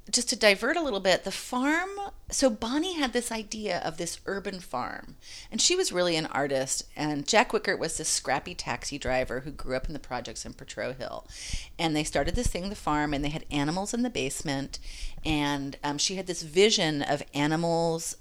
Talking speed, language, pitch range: 205 wpm, English, 150-210 Hz